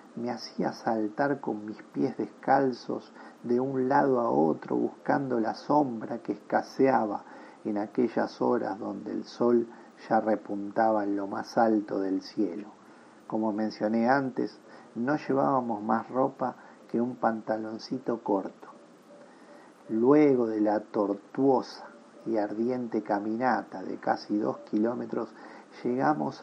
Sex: male